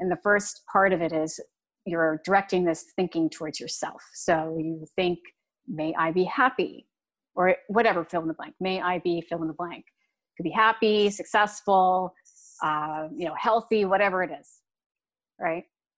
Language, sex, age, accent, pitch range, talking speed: English, female, 30-49, American, 175-220 Hz, 170 wpm